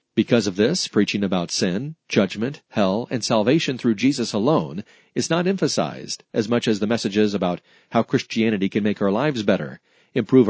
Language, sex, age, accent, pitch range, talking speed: English, male, 40-59, American, 105-130 Hz, 170 wpm